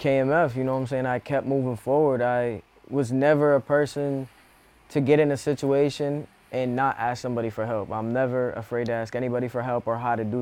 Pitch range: 120-140 Hz